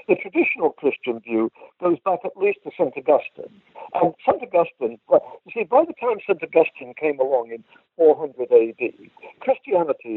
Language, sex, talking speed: English, male, 165 wpm